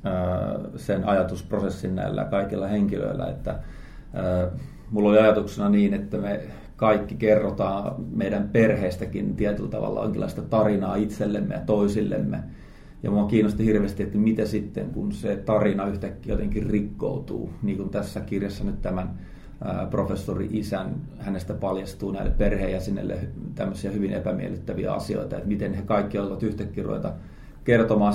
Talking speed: 130 wpm